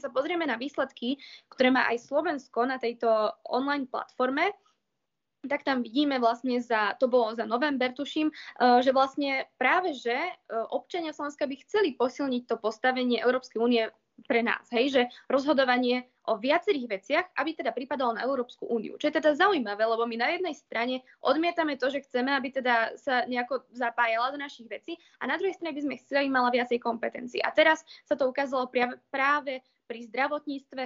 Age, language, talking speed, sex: 20-39, Slovak, 170 wpm, female